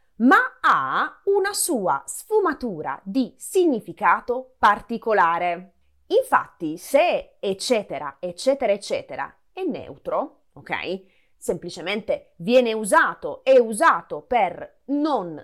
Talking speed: 90 wpm